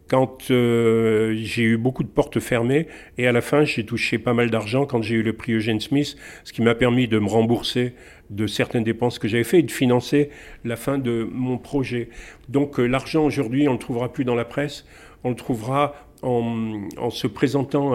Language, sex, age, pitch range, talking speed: French, male, 50-69, 115-140 Hz, 215 wpm